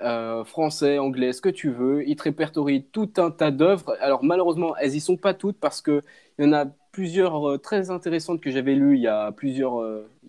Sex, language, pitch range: male, French, 120-155 Hz